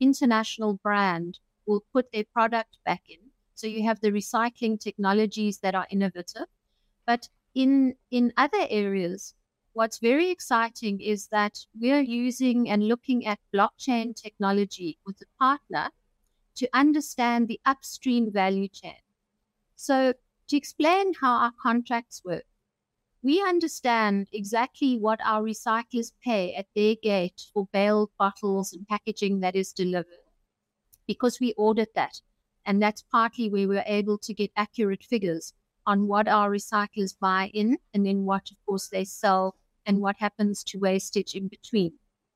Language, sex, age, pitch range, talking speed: English, female, 60-79, 200-245 Hz, 145 wpm